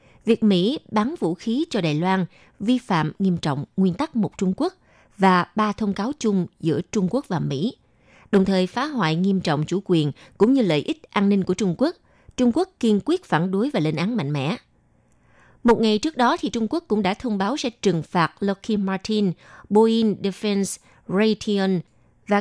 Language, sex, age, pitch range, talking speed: Vietnamese, female, 20-39, 170-225 Hz, 200 wpm